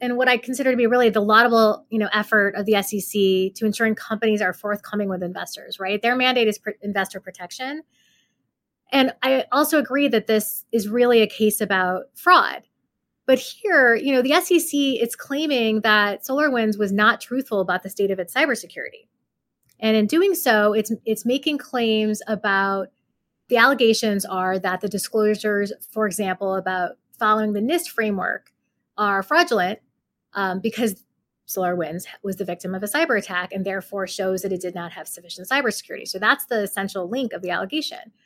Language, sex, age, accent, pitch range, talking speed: English, female, 20-39, American, 195-255 Hz, 175 wpm